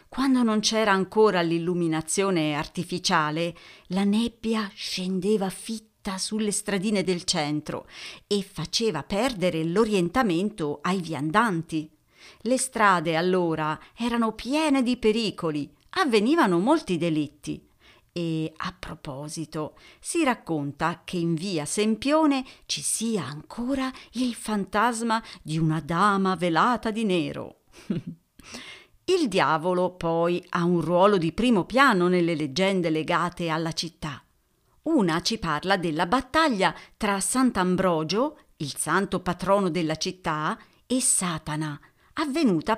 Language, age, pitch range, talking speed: Italian, 40-59, 165-225 Hz, 110 wpm